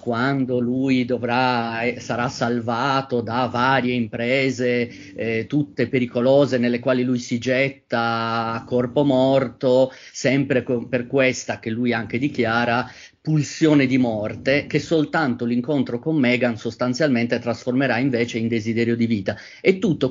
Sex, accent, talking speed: male, native, 130 wpm